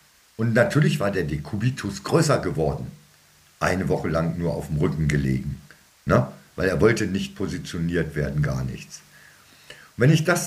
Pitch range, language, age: 110-150 Hz, German, 60-79